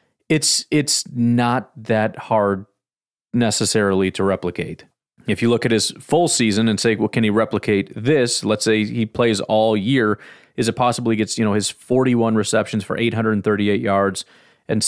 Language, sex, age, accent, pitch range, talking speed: English, male, 30-49, American, 105-125 Hz, 165 wpm